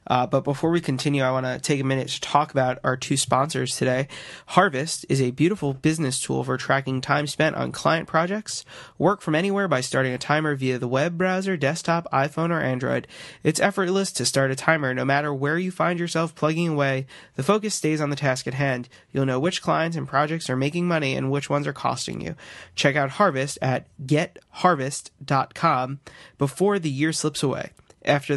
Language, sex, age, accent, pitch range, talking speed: English, male, 20-39, American, 135-170 Hz, 200 wpm